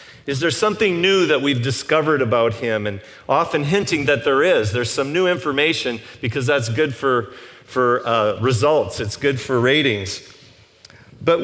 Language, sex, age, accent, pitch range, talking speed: English, male, 40-59, American, 125-165 Hz, 165 wpm